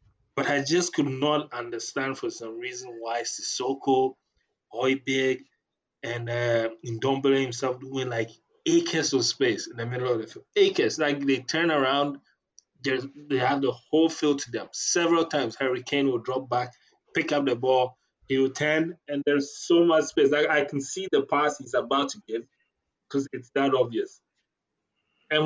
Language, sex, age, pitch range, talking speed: English, male, 20-39, 115-155 Hz, 165 wpm